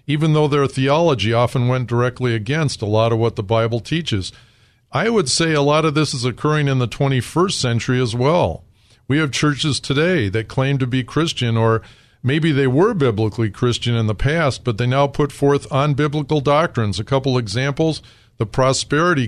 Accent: American